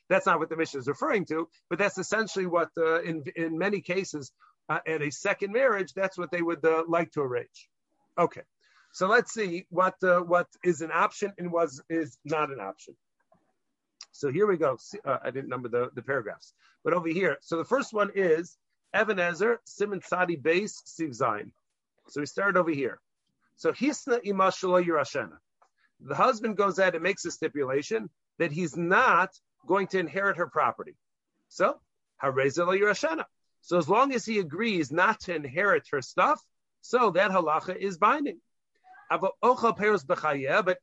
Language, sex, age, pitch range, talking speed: English, male, 50-69, 165-205 Hz, 165 wpm